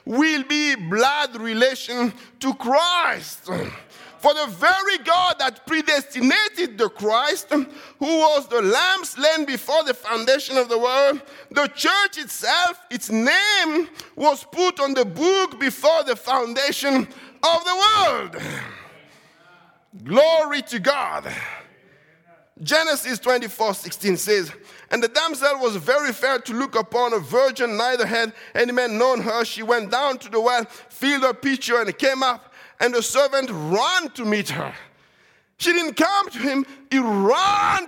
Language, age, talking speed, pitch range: English, 50-69, 145 wpm, 240-315 Hz